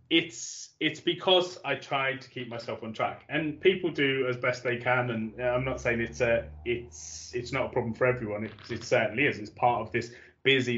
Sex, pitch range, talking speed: male, 115-135 Hz, 215 wpm